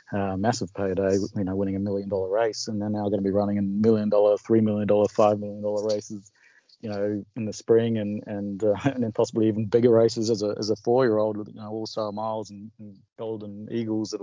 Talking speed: 245 wpm